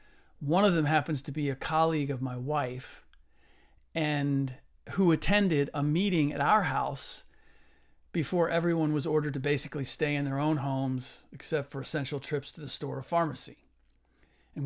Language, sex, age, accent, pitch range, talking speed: English, male, 40-59, American, 135-160 Hz, 165 wpm